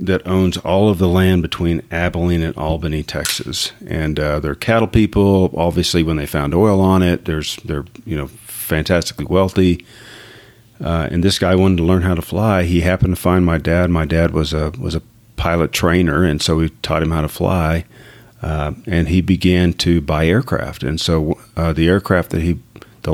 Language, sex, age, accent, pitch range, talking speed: English, male, 40-59, American, 80-95 Hz, 195 wpm